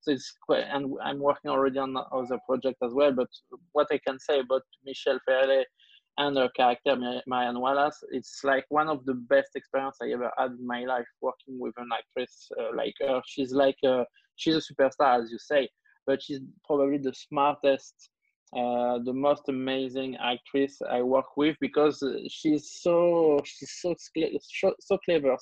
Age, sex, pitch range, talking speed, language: 20-39, male, 130-155 Hz, 170 wpm, English